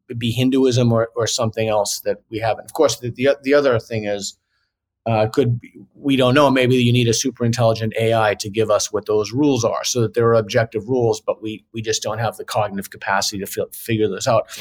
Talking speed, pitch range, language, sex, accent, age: 220 wpm, 110-135 Hz, English, male, American, 30-49